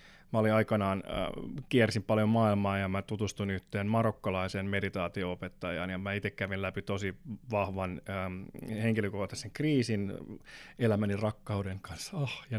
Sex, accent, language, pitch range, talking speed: male, native, Finnish, 100-115 Hz, 140 wpm